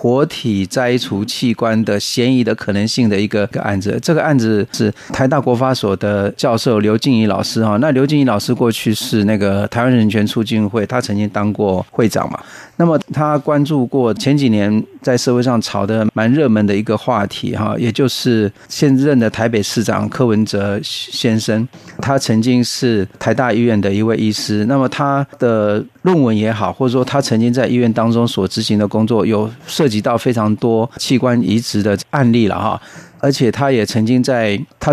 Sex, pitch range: male, 105-130 Hz